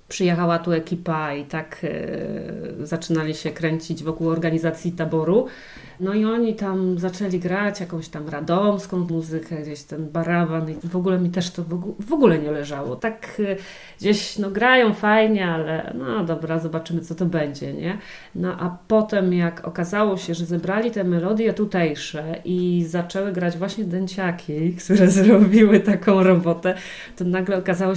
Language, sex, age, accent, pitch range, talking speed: Polish, female, 40-59, native, 165-195 Hz, 150 wpm